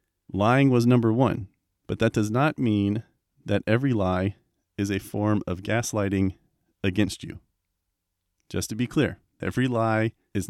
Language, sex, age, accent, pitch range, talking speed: English, male, 30-49, American, 95-120 Hz, 150 wpm